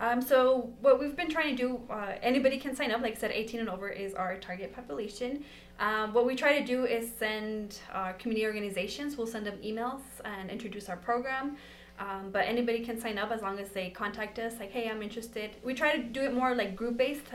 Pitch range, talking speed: 195-235 Hz, 230 wpm